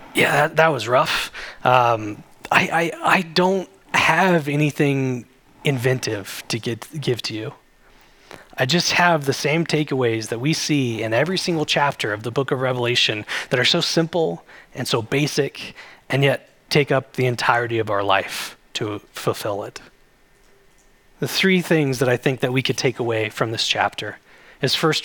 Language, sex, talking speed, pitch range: English, male, 170 wpm, 120-155 Hz